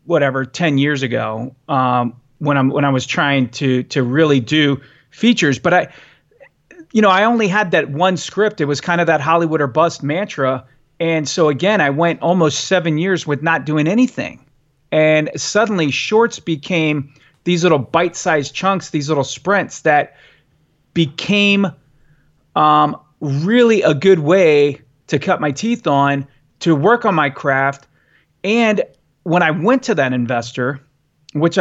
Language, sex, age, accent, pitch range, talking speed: English, male, 30-49, American, 140-175 Hz, 160 wpm